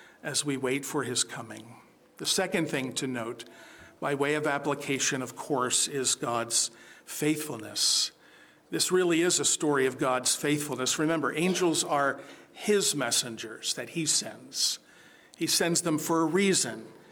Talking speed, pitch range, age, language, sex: 145 wpm, 135-165 Hz, 50-69, English, male